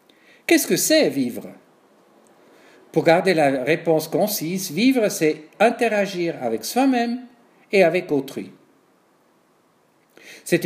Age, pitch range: 50-69, 155-210 Hz